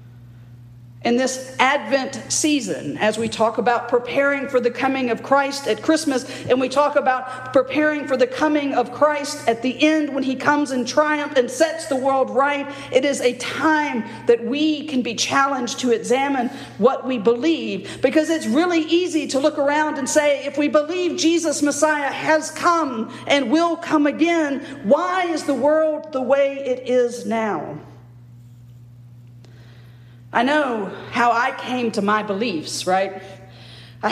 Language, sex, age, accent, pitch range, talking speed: English, female, 50-69, American, 205-290 Hz, 160 wpm